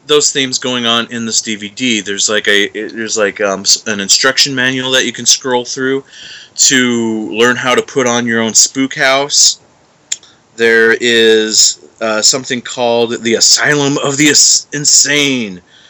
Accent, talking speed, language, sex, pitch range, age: American, 160 wpm, English, male, 110-135 Hz, 30-49